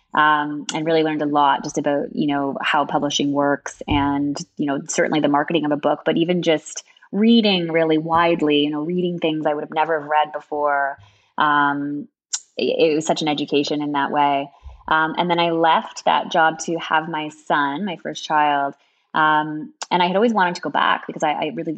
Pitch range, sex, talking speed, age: 145-170 Hz, female, 205 wpm, 20-39